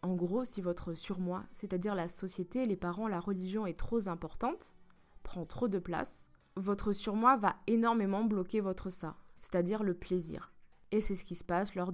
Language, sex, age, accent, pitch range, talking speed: French, female, 20-39, French, 180-220 Hz, 180 wpm